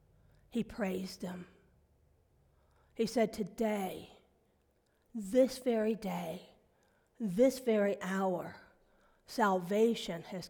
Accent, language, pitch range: American, English, 180-220 Hz